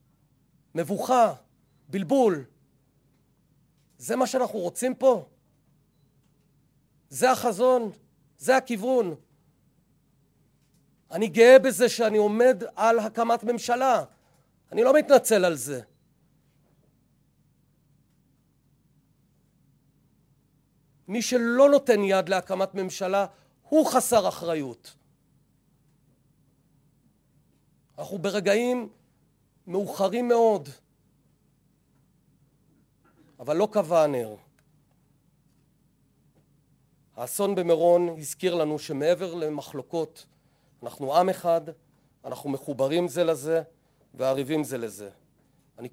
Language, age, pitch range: Hebrew, 40-59, 145-190 Hz